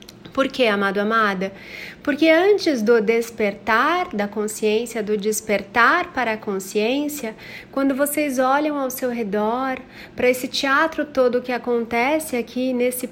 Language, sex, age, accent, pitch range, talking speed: Portuguese, female, 30-49, Brazilian, 220-275 Hz, 135 wpm